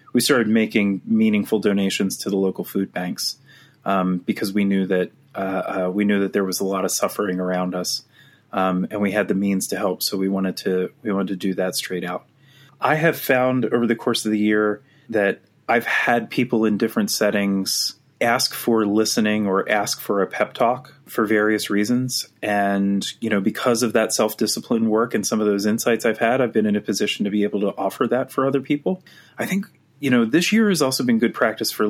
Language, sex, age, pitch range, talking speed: English, male, 30-49, 100-130 Hz, 220 wpm